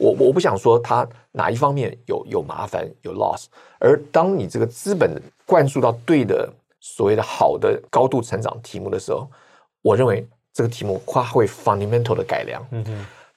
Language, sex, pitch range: Chinese, male, 110-150 Hz